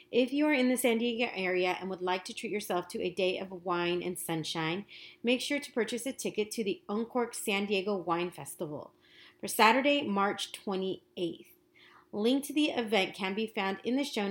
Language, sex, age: English, female, 30-49